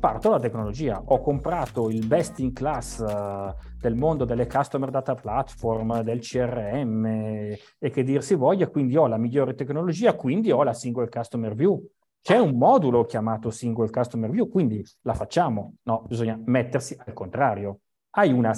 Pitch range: 115-145 Hz